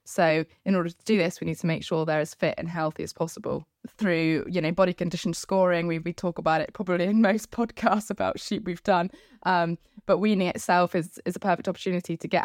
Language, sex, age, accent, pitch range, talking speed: English, female, 10-29, British, 160-180 Hz, 230 wpm